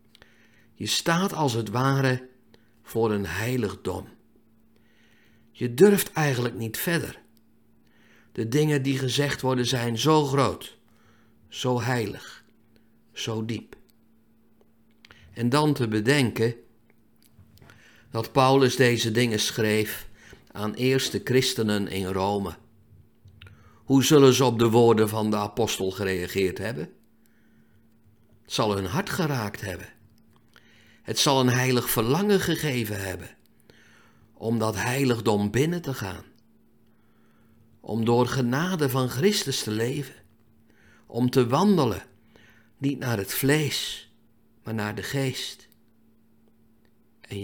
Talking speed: 110 wpm